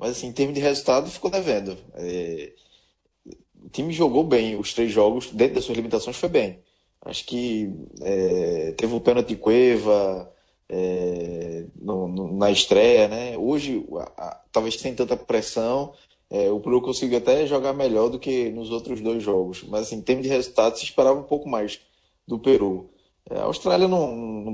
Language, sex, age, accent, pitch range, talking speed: Portuguese, male, 20-39, Brazilian, 100-125 Hz, 170 wpm